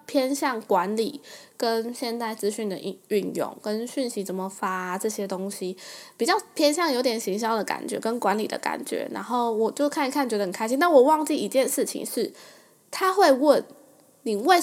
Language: Chinese